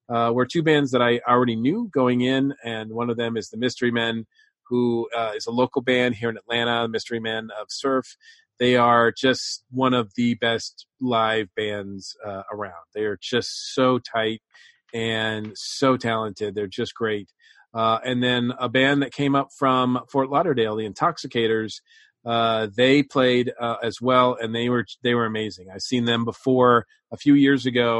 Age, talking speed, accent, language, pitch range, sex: 40-59, 185 wpm, American, English, 110-130 Hz, male